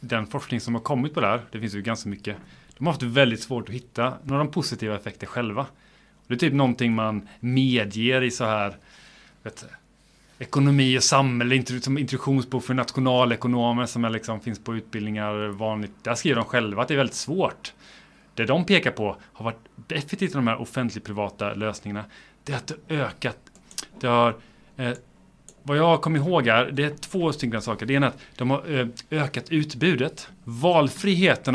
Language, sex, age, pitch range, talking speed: Swedish, male, 30-49, 115-135 Hz, 185 wpm